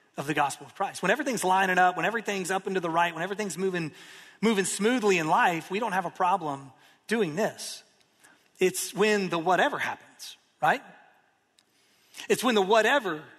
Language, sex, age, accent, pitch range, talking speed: English, male, 30-49, American, 160-205 Hz, 180 wpm